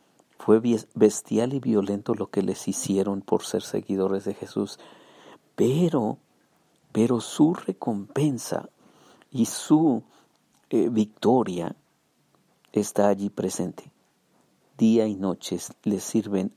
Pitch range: 95-110 Hz